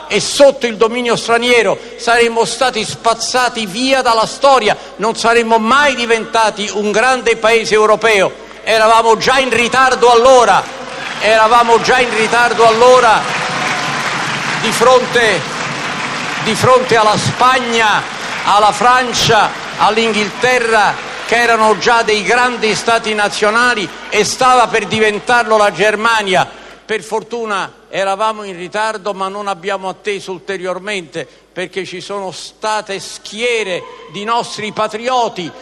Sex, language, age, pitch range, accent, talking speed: male, Italian, 50-69, 190-230 Hz, native, 115 wpm